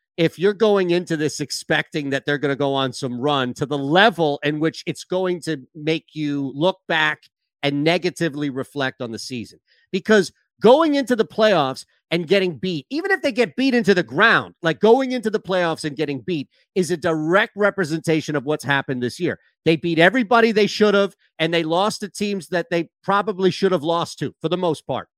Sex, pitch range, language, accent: male, 150-200 Hz, English, American